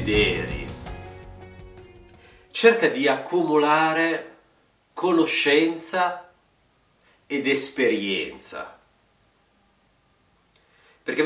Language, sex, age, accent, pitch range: Italian, male, 40-59, native, 130-175 Hz